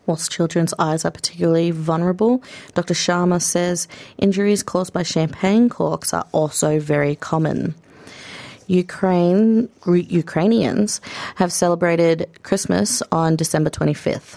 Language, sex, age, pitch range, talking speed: English, female, 30-49, 155-175 Hz, 115 wpm